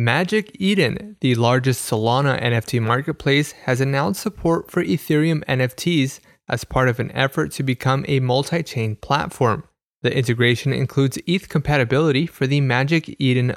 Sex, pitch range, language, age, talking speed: male, 120-150 Hz, English, 20-39, 140 wpm